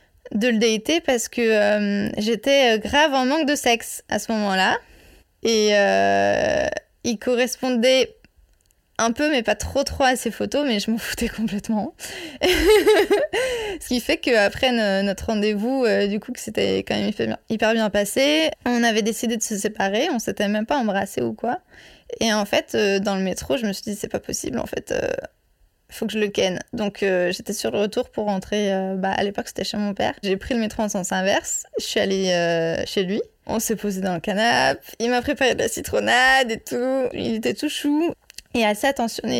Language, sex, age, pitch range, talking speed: French, female, 20-39, 205-260 Hz, 210 wpm